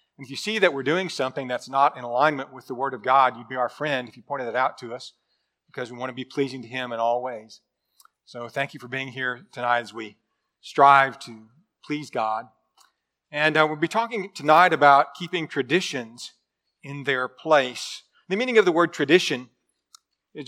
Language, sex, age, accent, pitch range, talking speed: English, male, 40-59, American, 135-160 Hz, 210 wpm